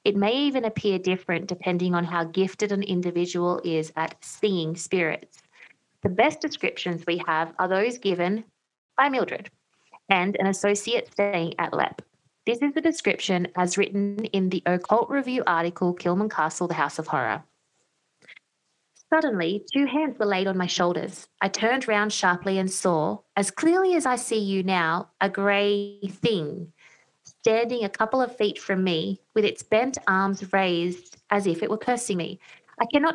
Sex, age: female, 20-39